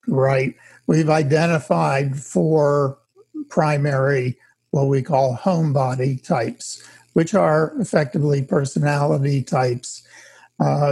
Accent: American